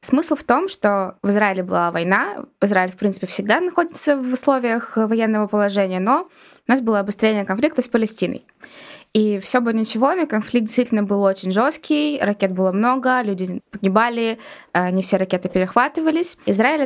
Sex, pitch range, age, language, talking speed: female, 195-250 Hz, 20-39, Russian, 160 wpm